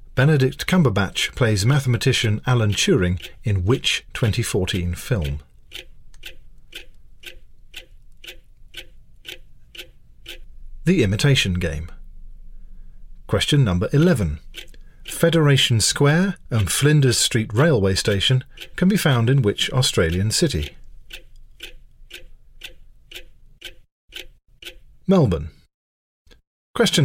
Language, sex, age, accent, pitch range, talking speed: English, male, 40-59, British, 90-140 Hz, 70 wpm